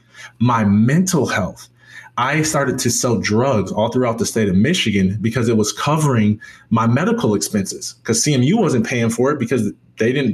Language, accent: English, American